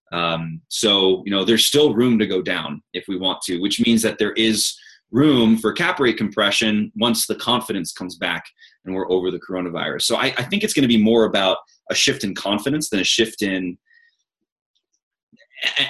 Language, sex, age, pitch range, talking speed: English, male, 20-39, 95-115 Hz, 200 wpm